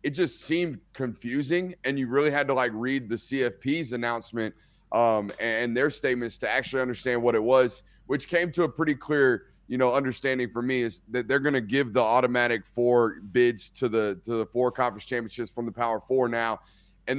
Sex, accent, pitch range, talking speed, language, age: male, American, 120-165 Hz, 205 wpm, English, 30-49